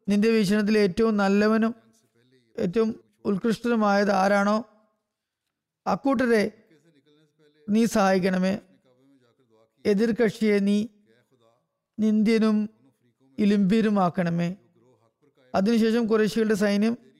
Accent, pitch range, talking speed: native, 185-220 Hz, 65 wpm